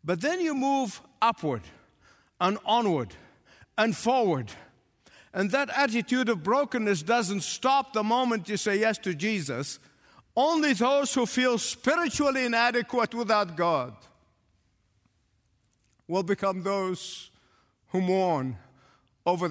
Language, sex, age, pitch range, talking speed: English, male, 50-69, 145-230 Hz, 115 wpm